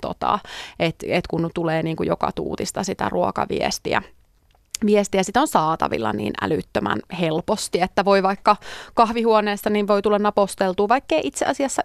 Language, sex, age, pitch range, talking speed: Finnish, female, 30-49, 180-225 Hz, 125 wpm